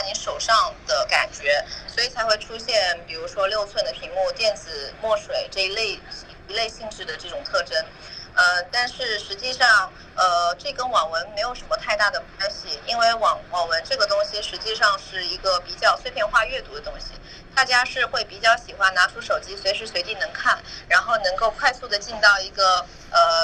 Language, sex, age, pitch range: Chinese, female, 20-39, 190-270 Hz